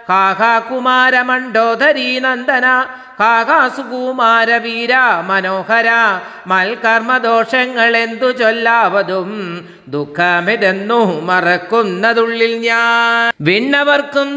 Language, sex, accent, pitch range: Malayalam, male, native, 225-255 Hz